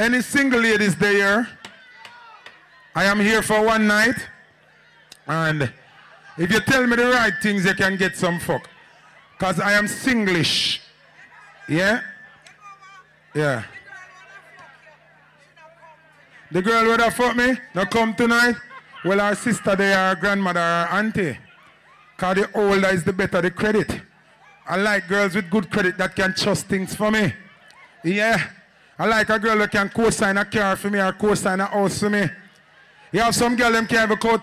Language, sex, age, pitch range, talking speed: English, male, 30-49, 190-270 Hz, 160 wpm